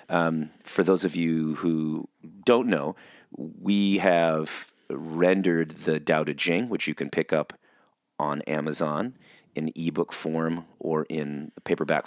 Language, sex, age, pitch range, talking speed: English, male, 30-49, 80-100 Hz, 140 wpm